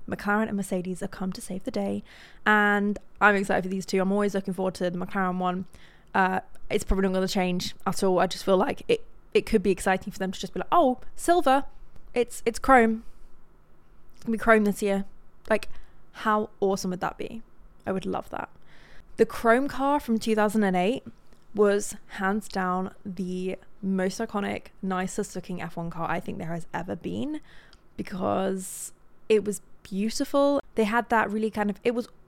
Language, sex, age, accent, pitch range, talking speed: English, female, 20-39, British, 190-225 Hz, 190 wpm